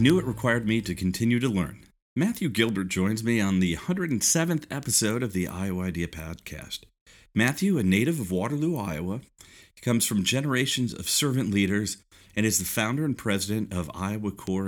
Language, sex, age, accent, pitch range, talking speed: English, male, 40-59, American, 95-120 Hz, 170 wpm